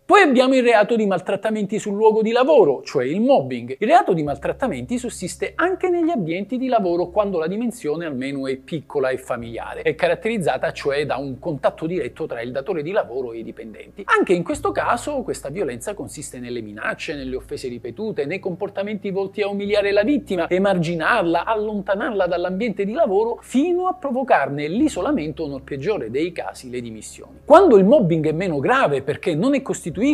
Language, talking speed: Italian, 180 wpm